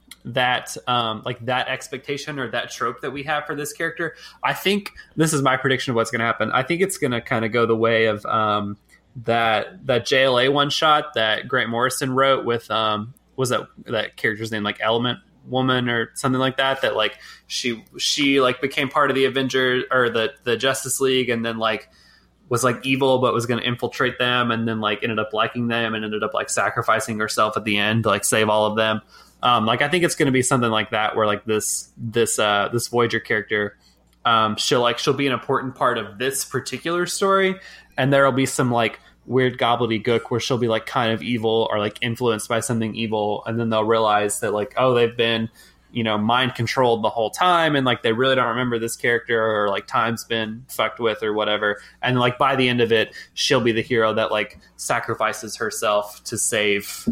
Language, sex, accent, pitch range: English, male, American, 110-130 Hz